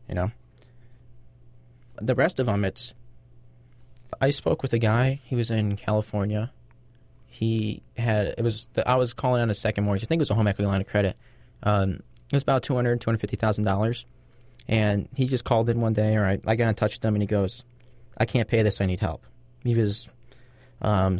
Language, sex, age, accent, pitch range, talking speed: English, male, 20-39, American, 105-125 Hz, 205 wpm